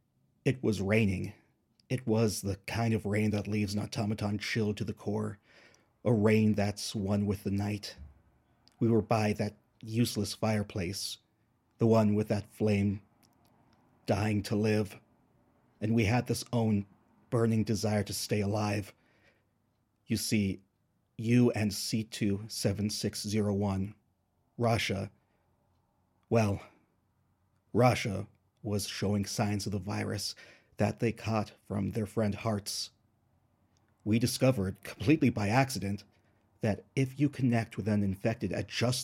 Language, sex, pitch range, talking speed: English, male, 105-115 Hz, 130 wpm